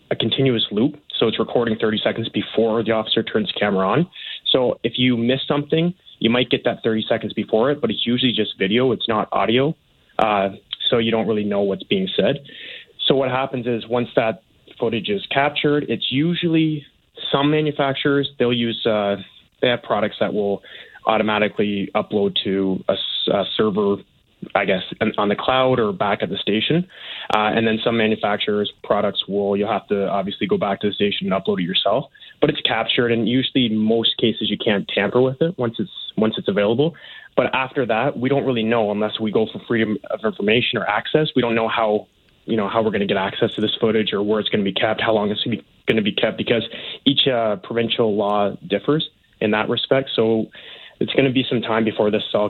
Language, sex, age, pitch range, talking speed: English, male, 20-39, 105-130 Hz, 210 wpm